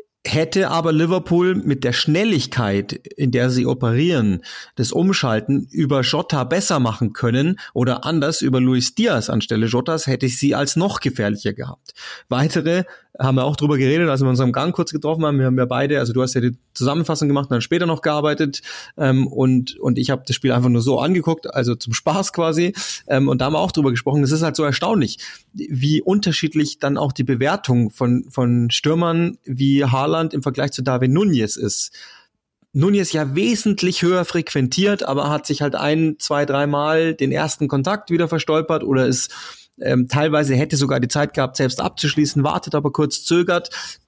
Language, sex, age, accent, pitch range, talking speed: German, male, 30-49, German, 130-160 Hz, 185 wpm